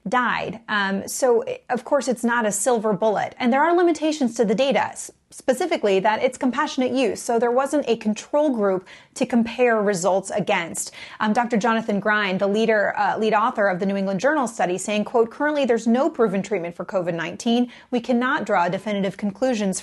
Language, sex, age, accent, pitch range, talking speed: English, female, 30-49, American, 205-265 Hz, 190 wpm